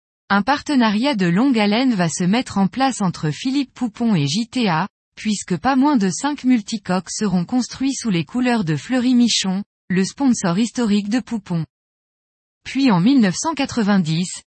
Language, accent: French, French